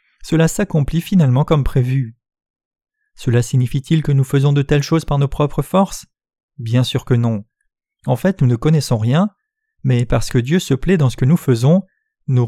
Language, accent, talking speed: French, French, 190 wpm